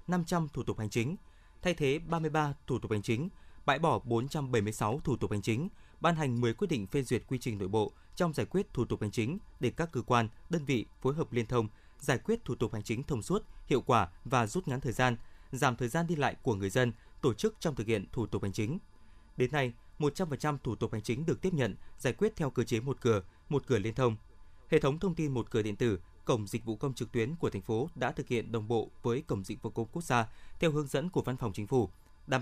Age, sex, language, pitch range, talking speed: 20-39, male, Vietnamese, 115-150 Hz, 255 wpm